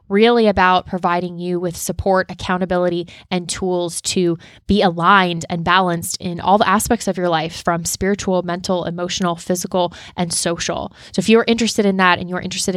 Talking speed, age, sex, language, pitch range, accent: 175 wpm, 20-39, female, English, 175-200 Hz, American